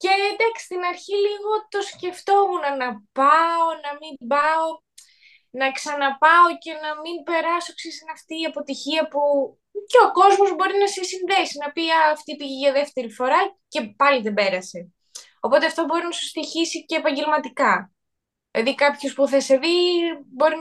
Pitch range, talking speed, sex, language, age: 265-365 Hz, 165 wpm, female, Greek, 20-39